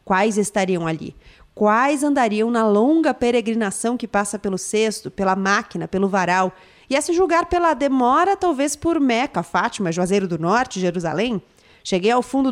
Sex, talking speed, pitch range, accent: female, 155 wpm, 190-255 Hz, Brazilian